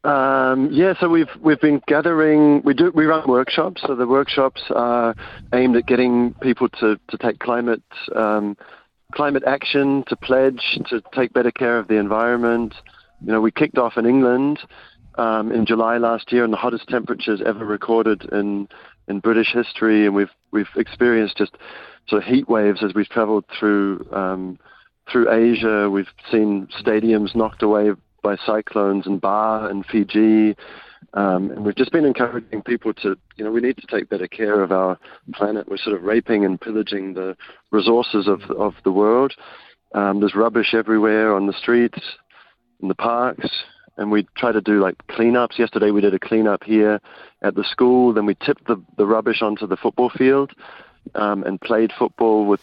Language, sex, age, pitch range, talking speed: English, male, 40-59, 105-120 Hz, 180 wpm